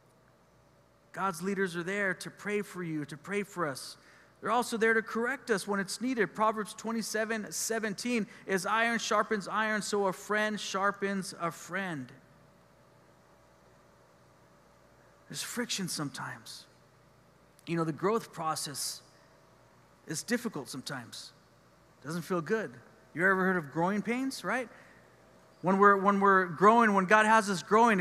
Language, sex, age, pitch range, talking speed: English, male, 40-59, 150-210 Hz, 140 wpm